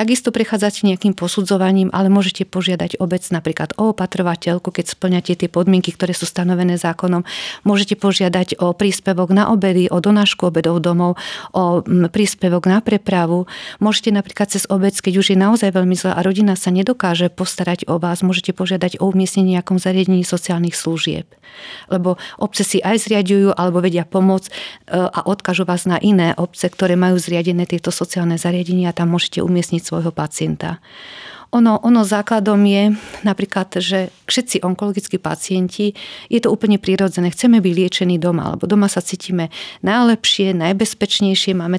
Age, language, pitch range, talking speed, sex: 40-59, Slovak, 180-200 Hz, 155 wpm, female